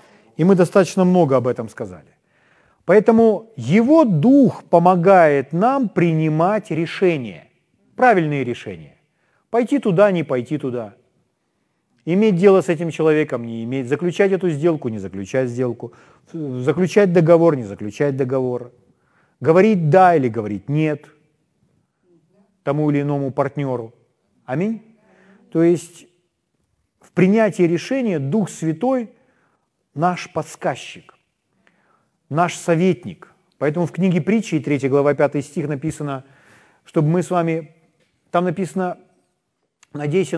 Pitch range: 140-190 Hz